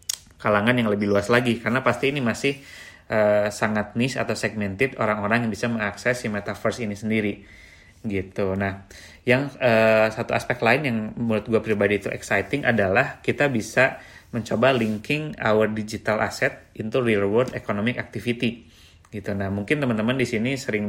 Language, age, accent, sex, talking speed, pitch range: Indonesian, 30-49, native, male, 160 wpm, 100-120 Hz